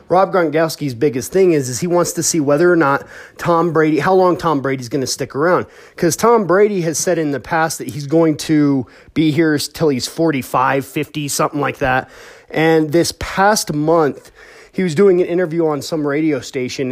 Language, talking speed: English, 200 wpm